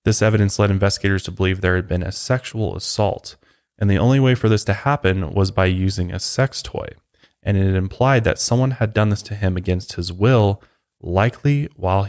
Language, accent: English, American